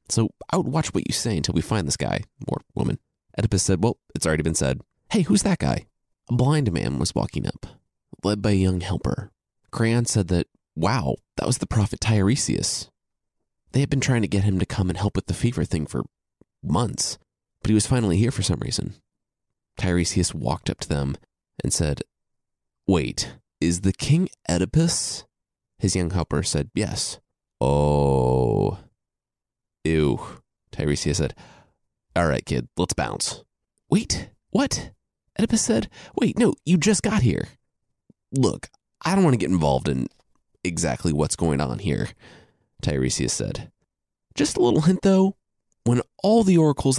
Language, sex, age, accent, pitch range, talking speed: English, male, 30-49, American, 85-135 Hz, 165 wpm